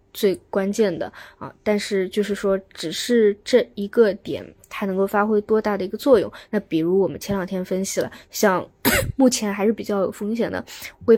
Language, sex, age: Chinese, female, 20-39